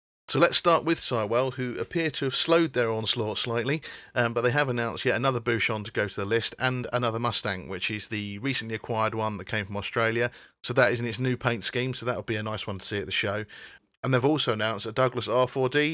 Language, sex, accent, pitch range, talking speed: English, male, British, 105-135 Hz, 245 wpm